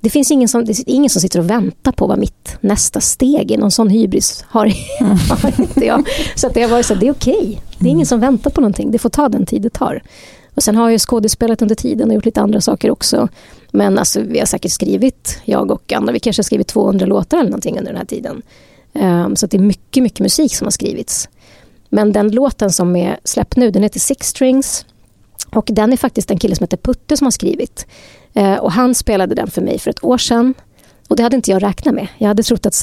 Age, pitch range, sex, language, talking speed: 30-49, 210-260 Hz, female, Swedish, 240 wpm